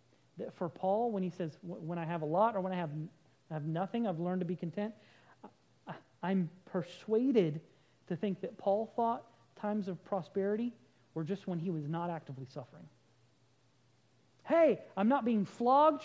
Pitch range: 160-210 Hz